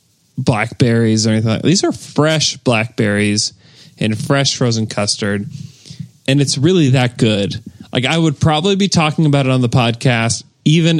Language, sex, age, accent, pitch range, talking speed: English, male, 20-39, American, 110-140 Hz, 155 wpm